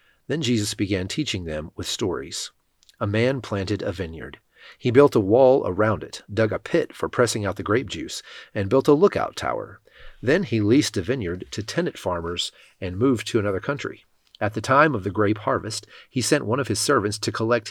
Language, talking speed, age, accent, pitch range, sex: English, 205 wpm, 40-59, American, 100-130 Hz, male